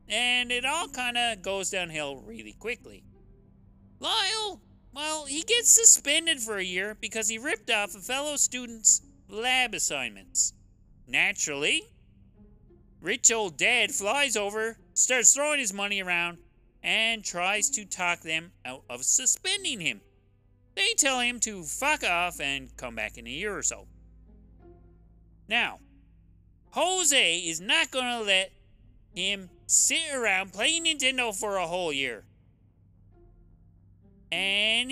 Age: 30-49